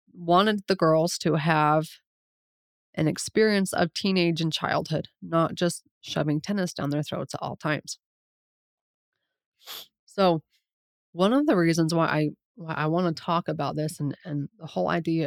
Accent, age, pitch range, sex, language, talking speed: American, 20-39, 150-175 Hz, female, English, 155 wpm